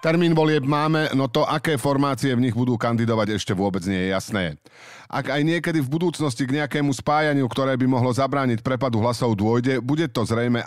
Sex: male